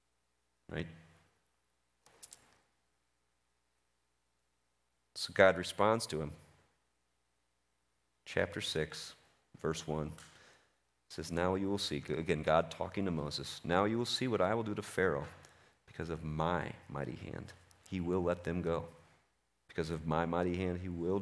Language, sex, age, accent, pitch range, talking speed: English, male, 40-59, American, 75-95 Hz, 135 wpm